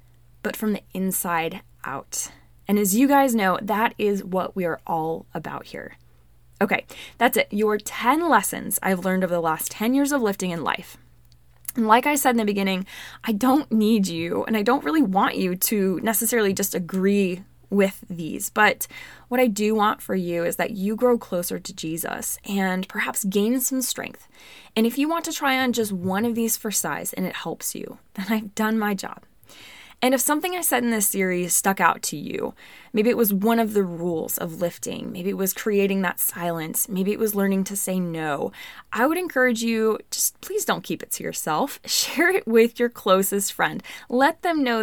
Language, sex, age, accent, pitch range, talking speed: English, female, 20-39, American, 185-245 Hz, 205 wpm